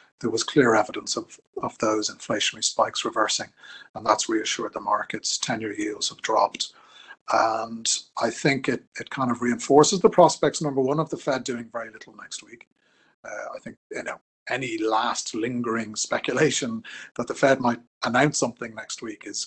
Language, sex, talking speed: English, male, 175 wpm